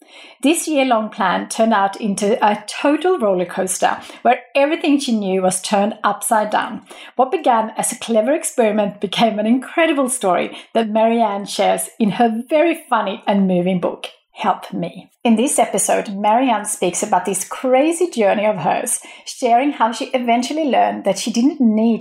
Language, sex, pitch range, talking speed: English, female, 205-275 Hz, 165 wpm